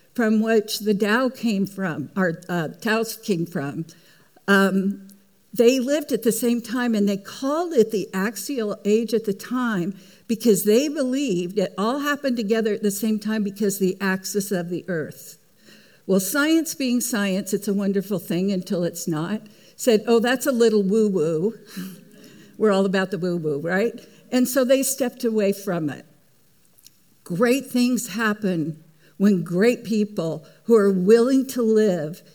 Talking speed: 160 wpm